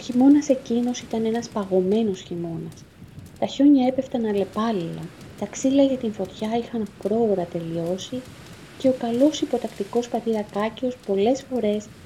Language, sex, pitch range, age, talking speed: Greek, female, 190-255 Hz, 30-49, 130 wpm